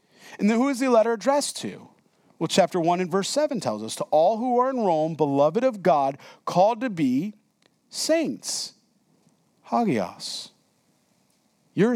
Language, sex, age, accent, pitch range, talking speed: English, male, 40-59, American, 160-240 Hz, 155 wpm